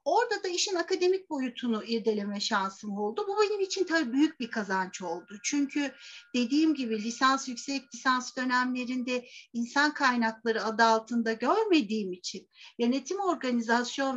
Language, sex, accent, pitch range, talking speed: Turkish, female, native, 220-290 Hz, 130 wpm